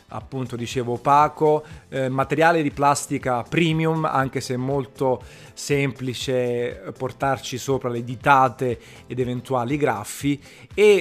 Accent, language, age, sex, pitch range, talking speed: native, Italian, 30-49, male, 120-145 Hz, 115 wpm